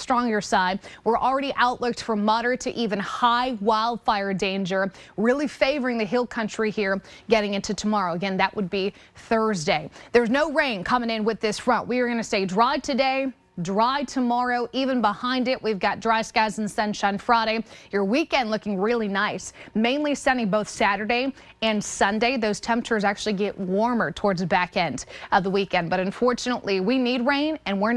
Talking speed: 180 wpm